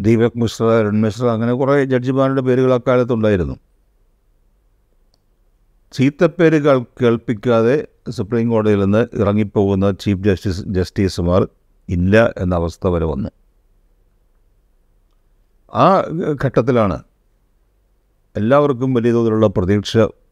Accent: native